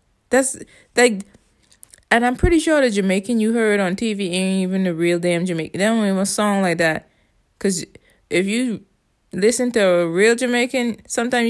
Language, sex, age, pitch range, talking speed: English, female, 20-39, 170-210 Hz, 185 wpm